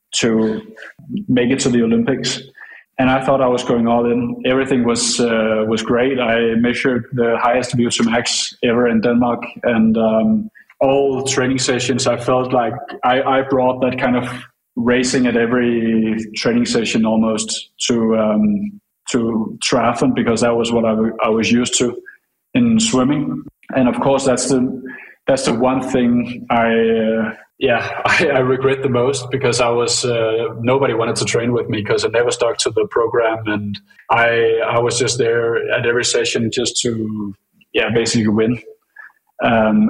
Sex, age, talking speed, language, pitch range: male, 20-39, 170 wpm, English, 115-135 Hz